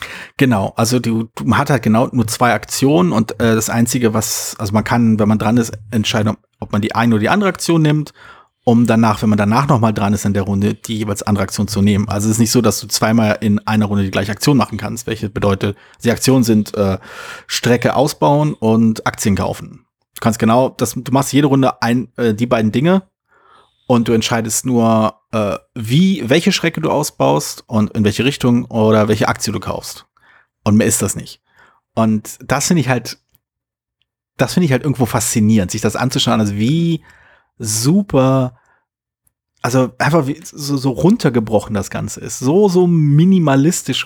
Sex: male